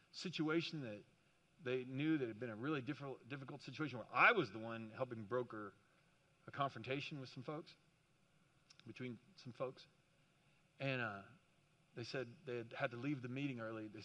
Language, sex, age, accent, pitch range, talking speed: English, male, 40-59, American, 135-170 Hz, 170 wpm